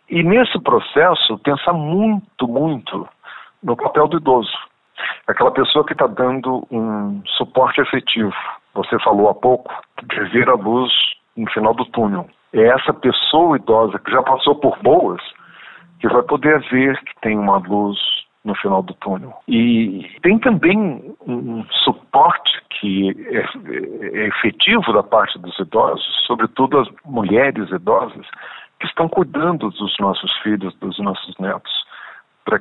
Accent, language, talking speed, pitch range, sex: Brazilian, Portuguese, 140 wpm, 105-140 Hz, male